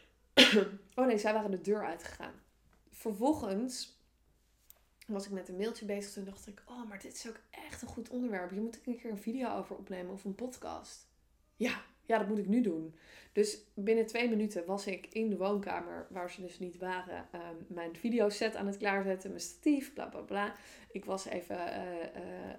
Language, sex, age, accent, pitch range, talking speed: Dutch, female, 20-39, Dutch, 190-235 Hz, 200 wpm